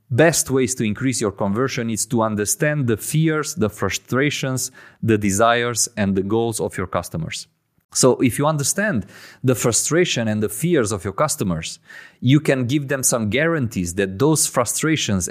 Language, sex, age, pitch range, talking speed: English, male, 30-49, 110-145 Hz, 165 wpm